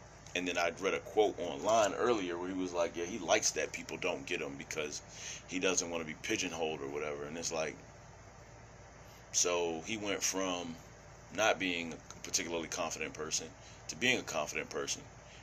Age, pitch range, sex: 30-49, 85-110 Hz, male